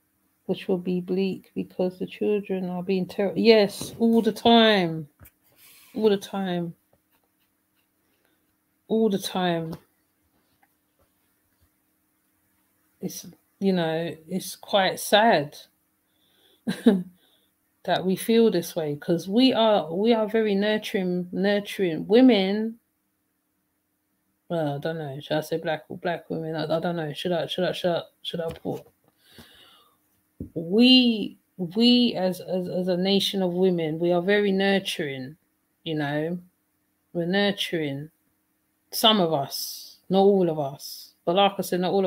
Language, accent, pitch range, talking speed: English, British, 160-195 Hz, 135 wpm